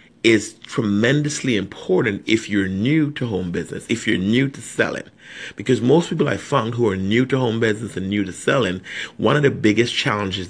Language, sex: English, male